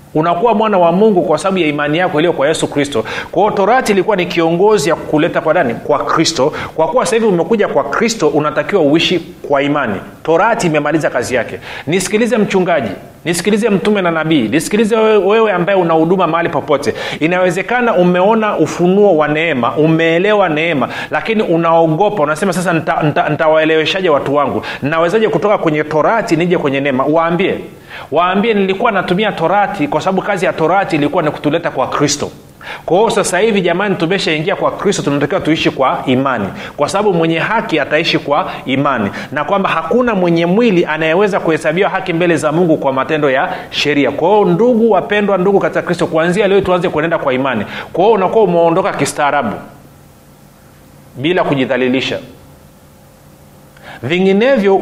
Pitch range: 155-200 Hz